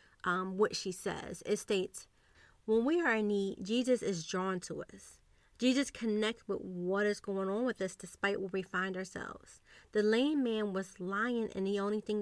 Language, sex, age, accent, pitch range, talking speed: English, female, 30-49, American, 195-240 Hz, 190 wpm